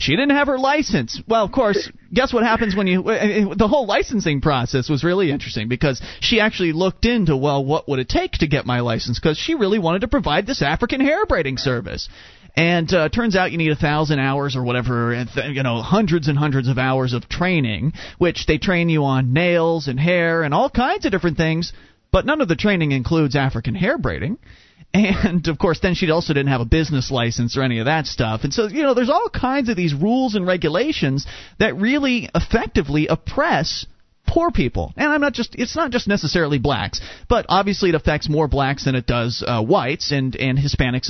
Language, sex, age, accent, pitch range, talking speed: English, male, 30-49, American, 130-190 Hz, 210 wpm